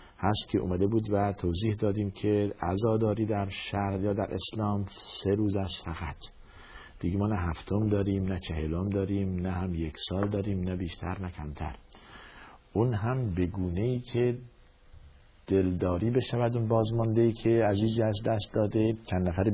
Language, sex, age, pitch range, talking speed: Persian, male, 50-69, 100-120 Hz, 155 wpm